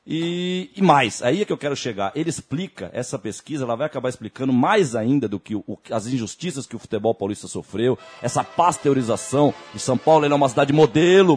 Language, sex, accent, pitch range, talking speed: Portuguese, male, Brazilian, 125-185 Hz, 205 wpm